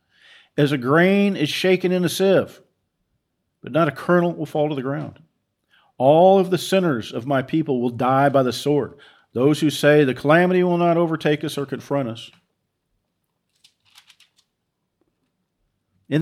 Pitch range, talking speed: 125-155 Hz, 155 wpm